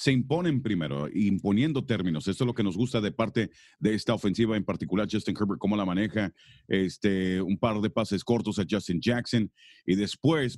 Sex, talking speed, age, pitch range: male, 195 wpm, 40-59, 100-125 Hz